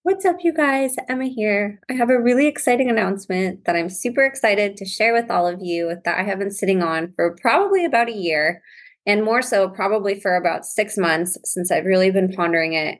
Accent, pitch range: American, 175-225 Hz